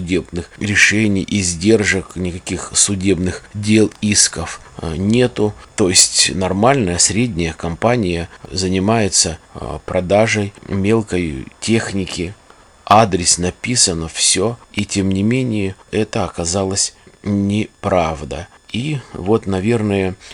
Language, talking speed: Russian, 90 wpm